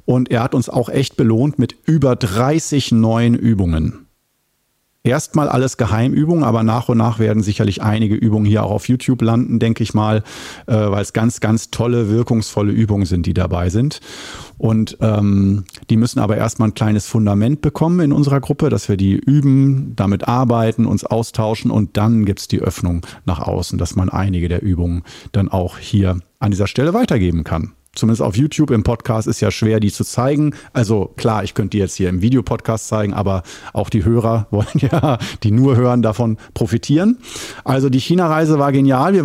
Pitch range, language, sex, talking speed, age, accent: 105-135 Hz, German, male, 185 wpm, 40-59, German